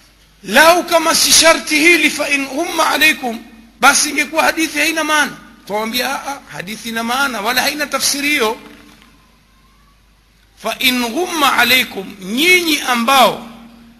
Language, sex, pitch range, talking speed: Swahili, male, 210-285 Hz, 110 wpm